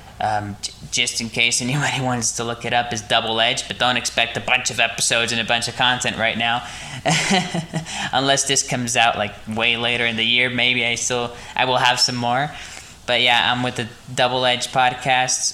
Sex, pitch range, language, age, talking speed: male, 110-125 Hz, English, 10-29, 210 wpm